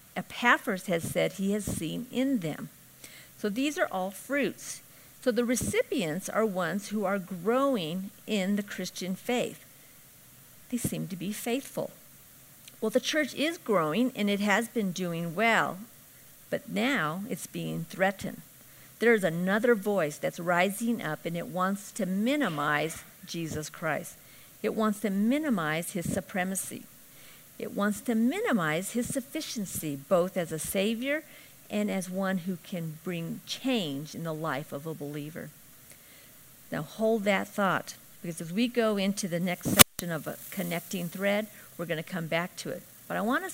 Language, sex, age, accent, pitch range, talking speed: English, female, 50-69, American, 170-230 Hz, 160 wpm